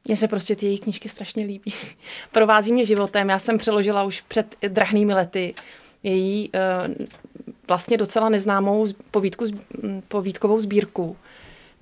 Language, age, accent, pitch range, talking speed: Czech, 30-49, native, 195-220 Hz, 125 wpm